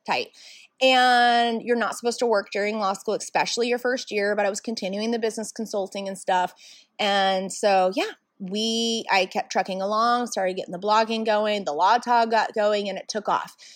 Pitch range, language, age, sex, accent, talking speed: 205-270 Hz, English, 30-49, female, American, 195 wpm